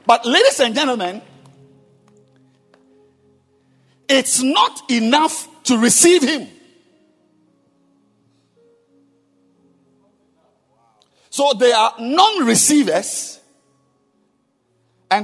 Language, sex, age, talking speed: English, male, 50-69, 60 wpm